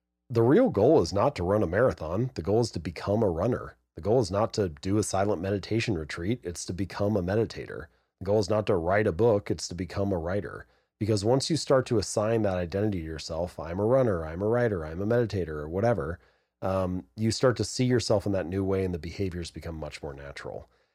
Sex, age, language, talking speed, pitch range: male, 30-49, English, 235 wpm, 90-110 Hz